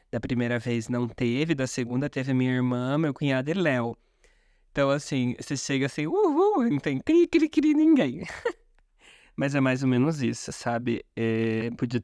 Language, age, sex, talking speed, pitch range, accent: Portuguese, 20-39, male, 180 wpm, 125-150 Hz, Brazilian